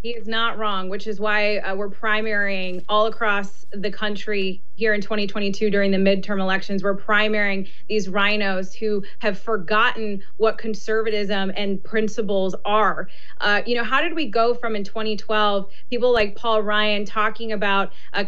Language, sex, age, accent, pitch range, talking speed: English, female, 20-39, American, 205-240 Hz, 165 wpm